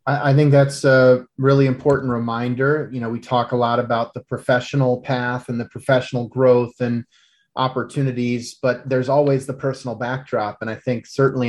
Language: English